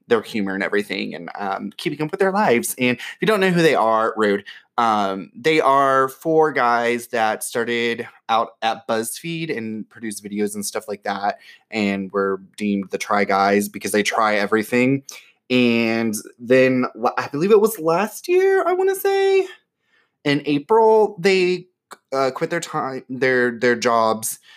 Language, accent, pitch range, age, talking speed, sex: English, American, 105-145 Hz, 20-39, 170 wpm, male